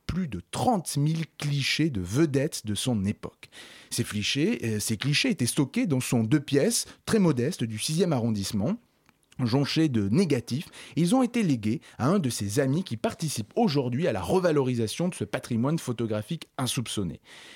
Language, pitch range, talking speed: French, 115-160 Hz, 165 wpm